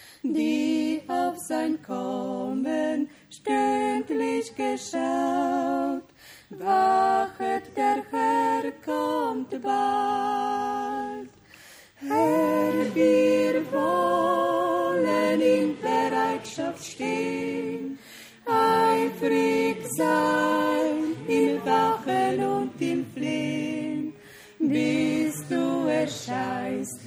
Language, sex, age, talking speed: German, female, 30-49, 60 wpm